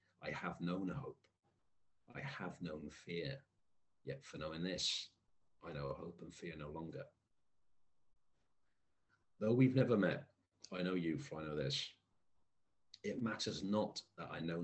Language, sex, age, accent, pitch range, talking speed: English, male, 40-59, British, 90-135 Hz, 150 wpm